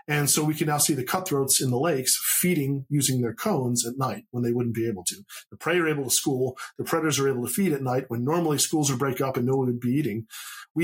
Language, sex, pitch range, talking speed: English, male, 125-155 Hz, 275 wpm